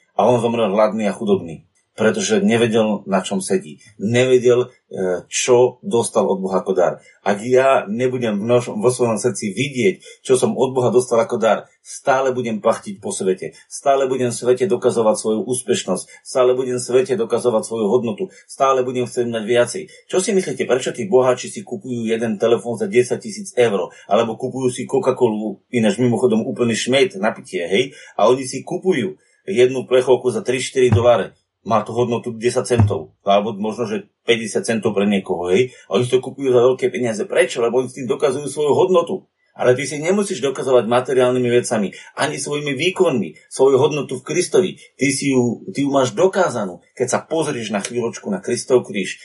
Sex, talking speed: male, 180 wpm